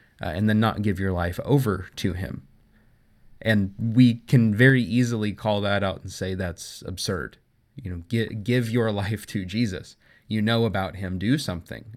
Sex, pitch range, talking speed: male, 95-120 Hz, 180 wpm